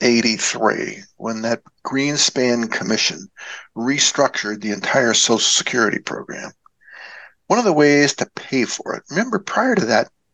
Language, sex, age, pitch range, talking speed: English, male, 60-79, 120-195 Hz, 135 wpm